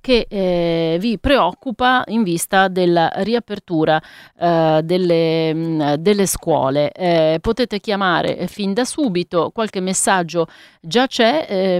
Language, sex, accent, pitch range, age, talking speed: Italian, female, native, 175-235 Hz, 30-49, 120 wpm